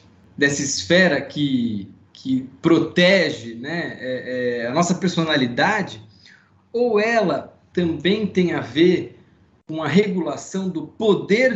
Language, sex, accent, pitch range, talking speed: Portuguese, male, Brazilian, 130-185 Hz, 115 wpm